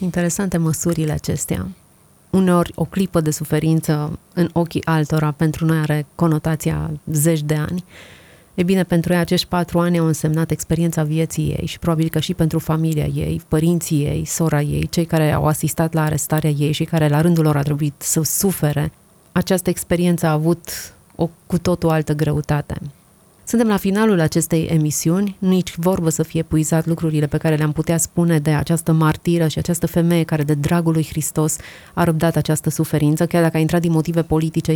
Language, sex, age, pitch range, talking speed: Romanian, female, 30-49, 155-170 Hz, 180 wpm